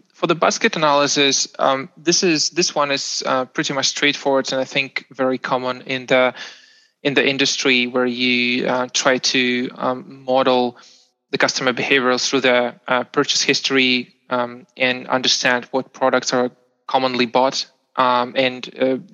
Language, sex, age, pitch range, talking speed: English, male, 20-39, 125-140 Hz, 155 wpm